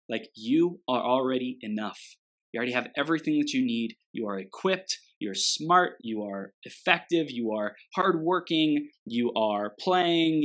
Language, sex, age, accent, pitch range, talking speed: English, male, 20-39, American, 115-170 Hz, 150 wpm